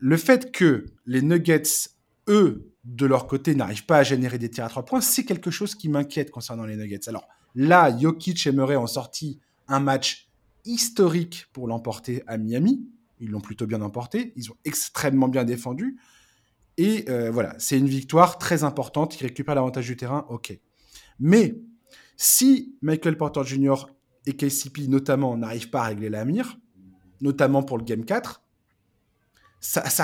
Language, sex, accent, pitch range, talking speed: French, male, French, 120-175 Hz, 170 wpm